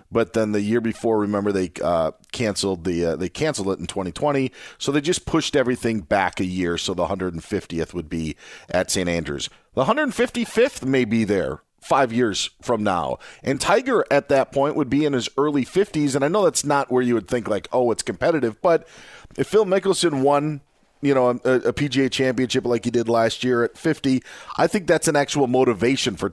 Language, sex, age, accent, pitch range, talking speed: English, male, 40-59, American, 105-140 Hz, 205 wpm